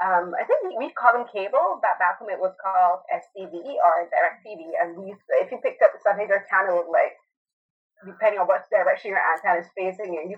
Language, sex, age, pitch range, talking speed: English, female, 20-39, 175-235 Hz, 235 wpm